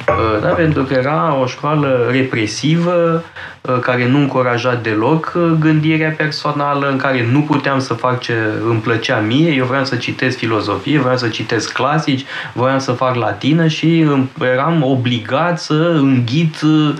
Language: Romanian